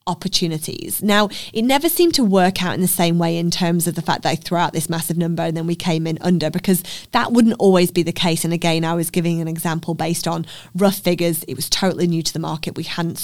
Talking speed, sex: 260 wpm, female